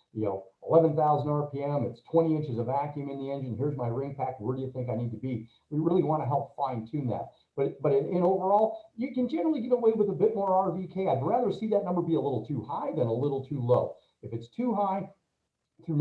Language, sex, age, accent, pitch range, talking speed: English, male, 50-69, American, 125-170 Hz, 250 wpm